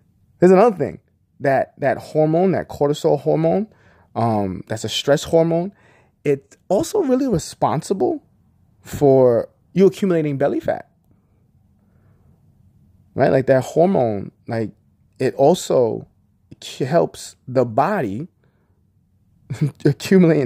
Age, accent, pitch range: 20-39, American, 110-150 Hz